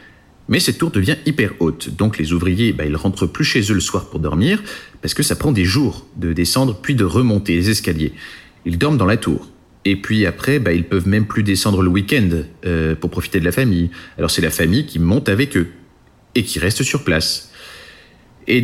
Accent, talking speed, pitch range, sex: French, 225 wpm, 90-135 Hz, male